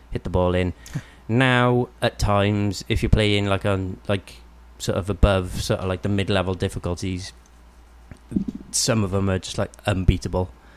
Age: 20-39